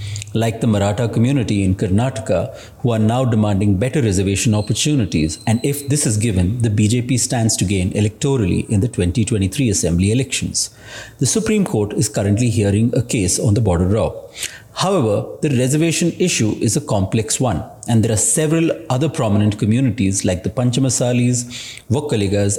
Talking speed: 160 wpm